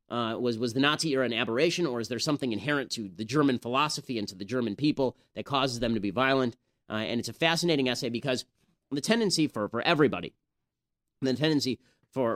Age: 30-49